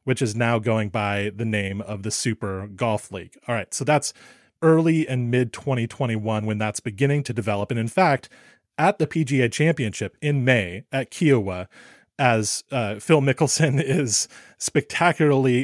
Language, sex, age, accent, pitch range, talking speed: English, male, 30-49, American, 110-140 Hz, 155 wpm